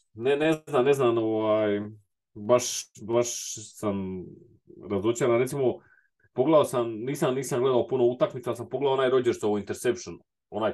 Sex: male